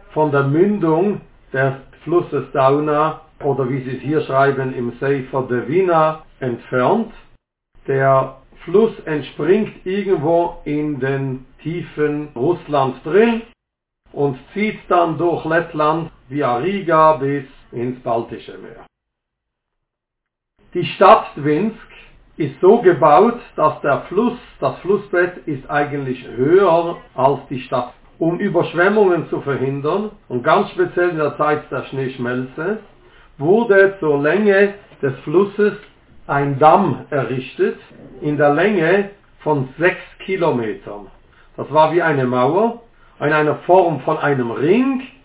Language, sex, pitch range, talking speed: German, male, 135-180 Hz, 120 wpm